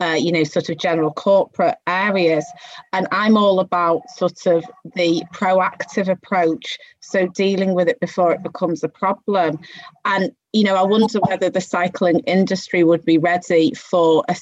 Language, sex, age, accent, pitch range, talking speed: English, female, 30-49, British, 175-215 Hz, 165 wpm